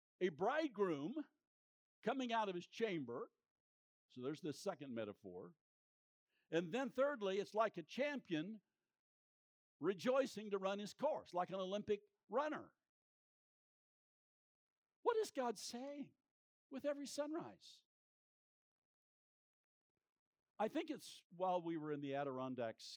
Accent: American